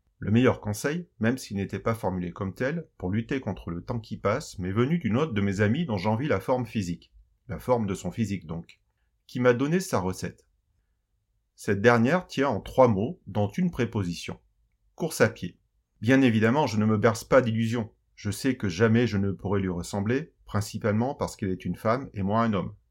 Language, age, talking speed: French, 30-49, 205 wpm